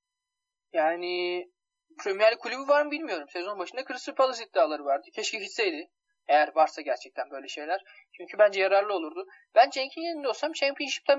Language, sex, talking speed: Turkish, male, 150 wpm